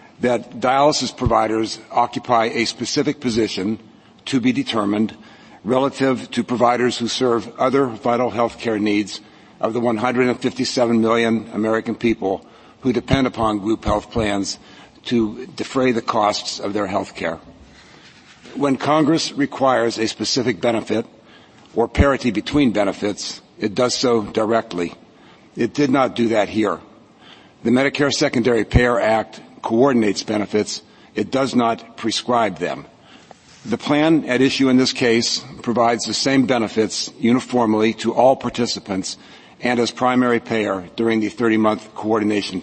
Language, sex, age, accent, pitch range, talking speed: English, male, 60-79, American, 110-125 Hz, 135 wpm